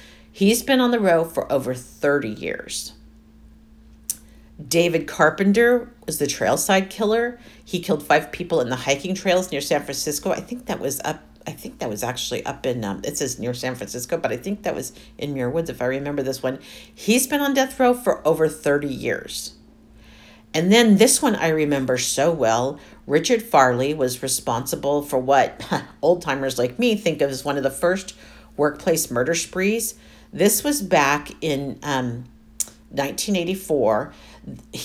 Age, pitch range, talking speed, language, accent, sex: 50-69, 130-190 Hz, 170 wpm, English, American, female